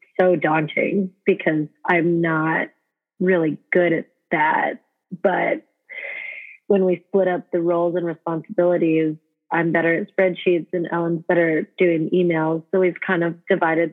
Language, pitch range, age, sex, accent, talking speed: English, 165-195 Hz, 30-49, female, American, 140 wpm